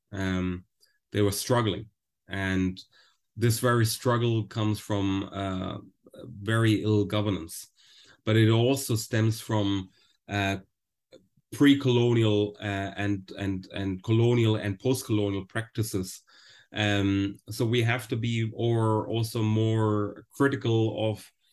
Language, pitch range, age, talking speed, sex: English, 100-115 Hz, 30-49, 110 wpm, male